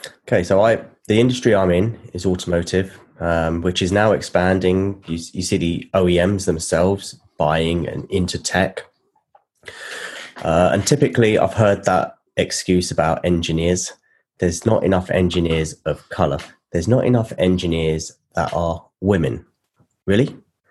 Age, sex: 20-39, male